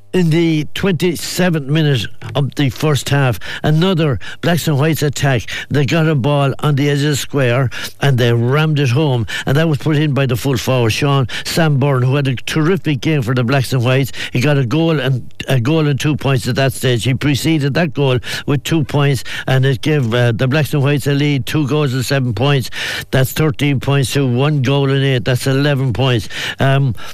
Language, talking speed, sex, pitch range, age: English, 210 wpm, male, 130-150 Hz, 60-79